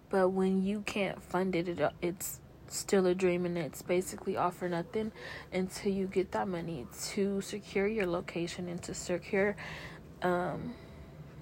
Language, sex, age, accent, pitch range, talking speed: English, female, 20-39, American, 175-190 Hz, 160 wpm